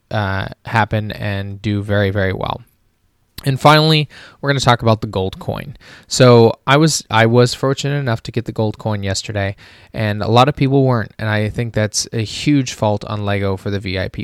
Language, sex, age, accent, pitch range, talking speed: English, male, 20-39, American, 105-130 Hz, 200 wpm